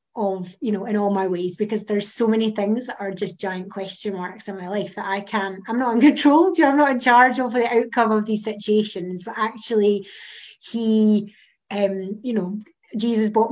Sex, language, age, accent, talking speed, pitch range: female, English, 20-39, British, 210 wpm, 195-225 Hz